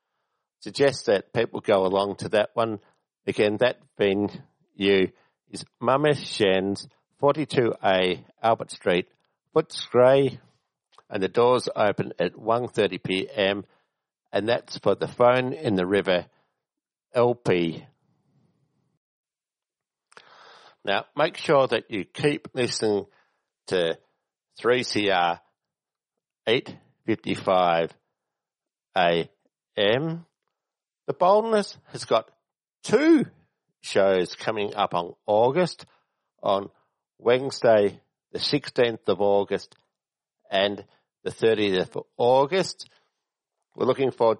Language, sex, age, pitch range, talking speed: English, male, 60-79, 100-135 Hz, 95 wpm